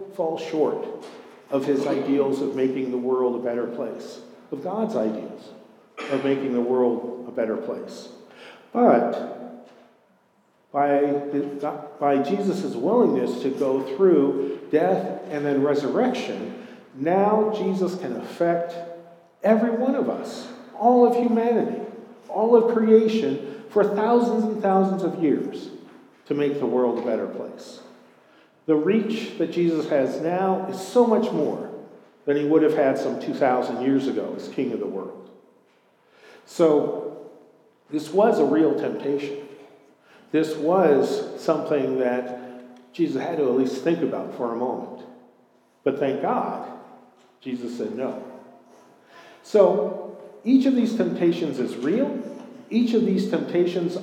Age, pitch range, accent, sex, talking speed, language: 50-69, 140-225 Hz, American, male, 135 wpm, English